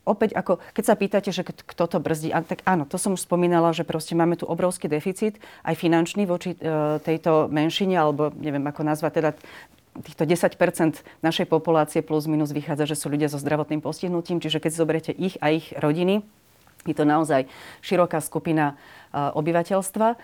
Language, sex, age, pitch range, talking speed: Slovak, female, 30-49, 150-175 Hz, 170 wpm